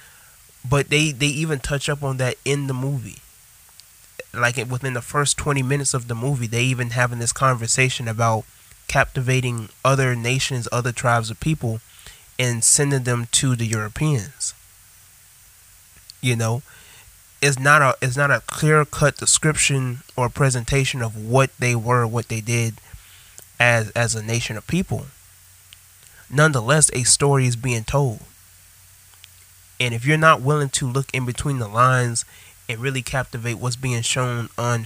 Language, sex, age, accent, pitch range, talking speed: English, male, 20-39, American, 110-135 Hz, 150 wpm